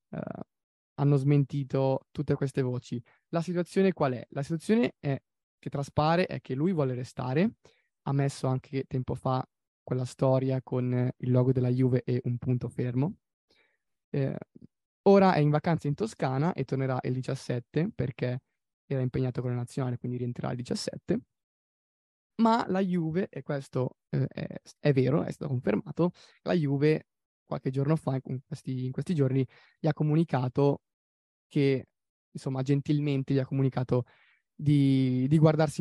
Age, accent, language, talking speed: 20-39, native, Italian, 145 wpm